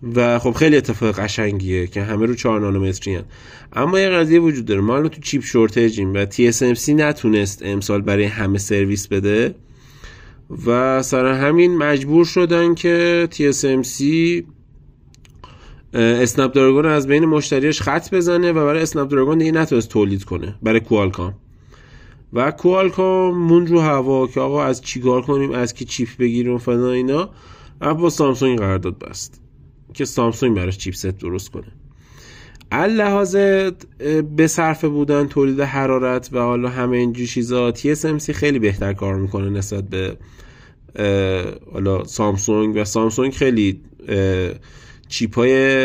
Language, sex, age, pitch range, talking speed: Persian, male, 30-49, 105-145 Hz, 135 wpm